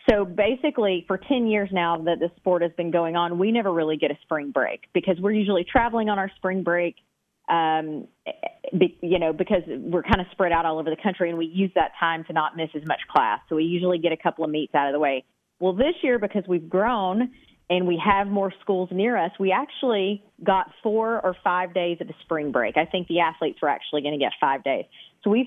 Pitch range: 160-190 Hz